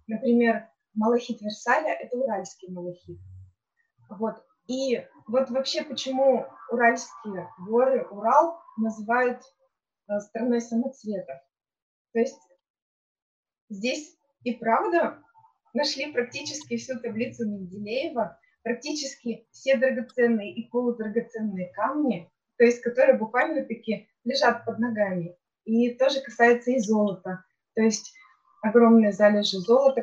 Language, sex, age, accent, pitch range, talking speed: Russian, female, 20-39, native, 215-260 Hz, 100 wpm